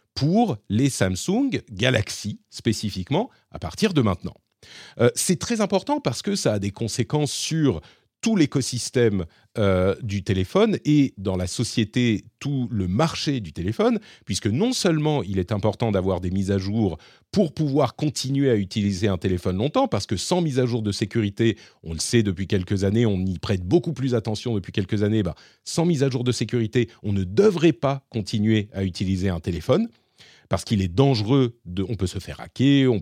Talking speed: 185 wpm